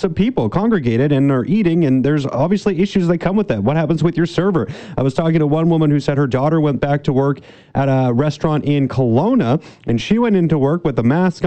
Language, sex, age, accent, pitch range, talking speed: English, male, 30-49, American, 125-170 Hz, 240 wpm